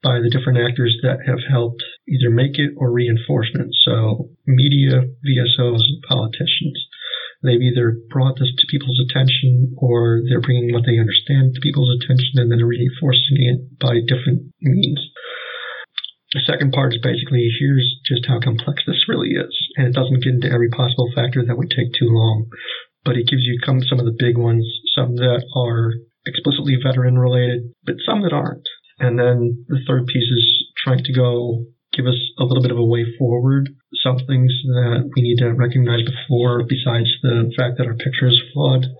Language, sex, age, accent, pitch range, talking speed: English, male, 40-59, American, 120-135 Hz, 180 wpm